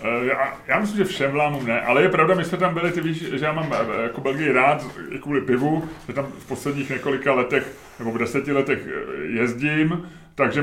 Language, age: Czech, 30-49